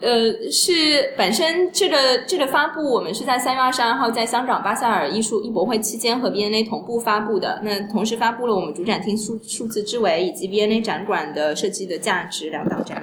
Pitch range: 205-245 Hz